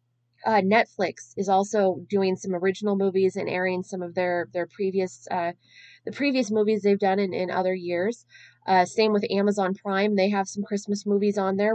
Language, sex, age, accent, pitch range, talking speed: English, female, 20-39, American, 180-215 Hz, 190 wpm